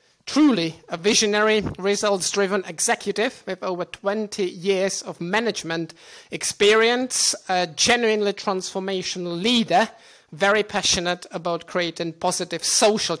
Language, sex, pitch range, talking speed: English, male, 170-205 Hz, 100 wpm